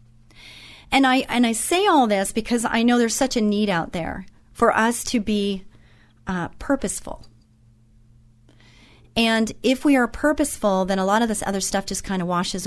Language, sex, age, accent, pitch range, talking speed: English, female, 40-59, American, 175-240 Hz, 180 wpm